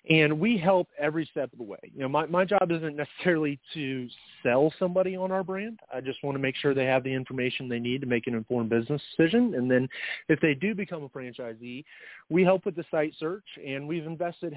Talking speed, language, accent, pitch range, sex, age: 230 wpm, English, American, 125-170 Hz, male, 30-49